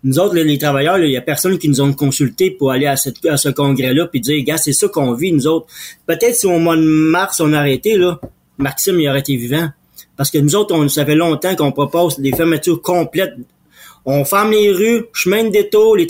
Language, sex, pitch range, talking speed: French, male, 150-195 Hz, 240 wpm